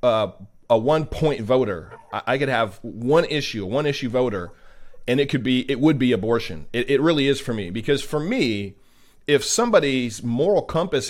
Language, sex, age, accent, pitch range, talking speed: English, male, 40-59, American, 120-150 Hz, 185 wpm